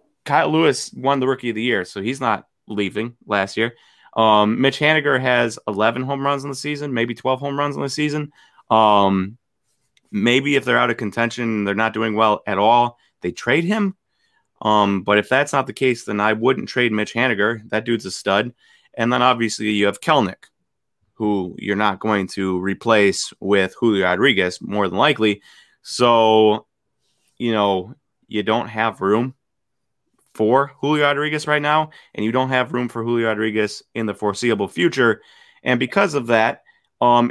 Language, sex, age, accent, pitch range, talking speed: English, male, 30-49, American, 105-130 Hz, 180 wpm